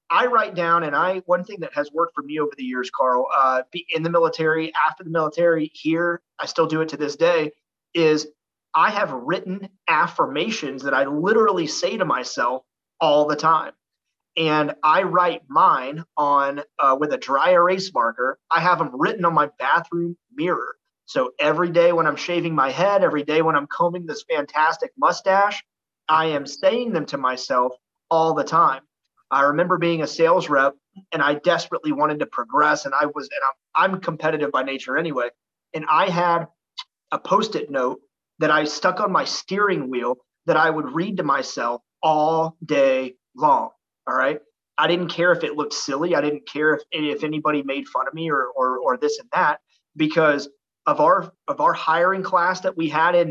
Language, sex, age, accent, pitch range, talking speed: English, male, 30-49, American, 150-175 Hz, 190 wpm